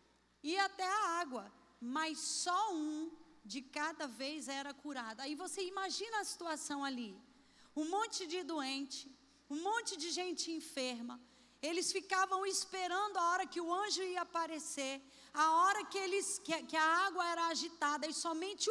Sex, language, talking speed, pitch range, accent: female, Portuguese, 155 wpm, 280-370 Hz, Brazilian